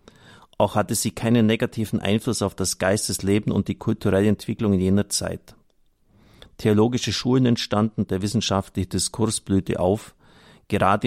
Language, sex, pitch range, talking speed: German, male, 100-115 Hz, 135 wpm